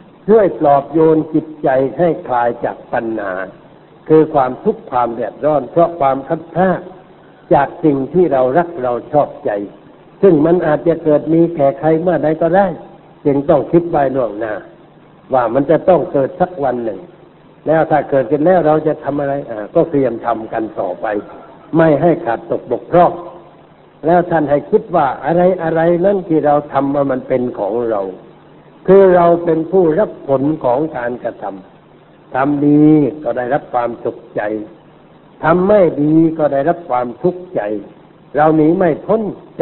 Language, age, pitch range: Thai, 60-79, 140-175 Hz